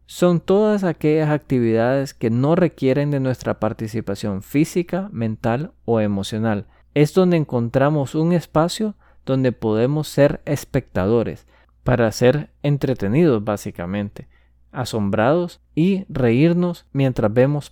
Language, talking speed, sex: Spanish, 110 wpm, male